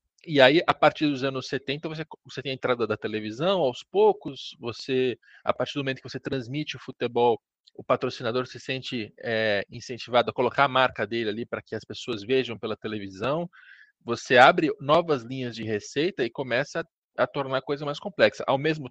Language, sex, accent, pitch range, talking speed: Portuguese, male, Brazilian, 115-160 Hz, 195 wpm